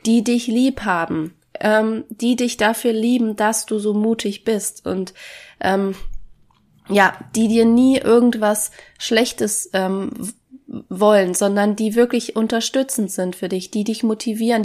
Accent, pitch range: German, 195-225 Hz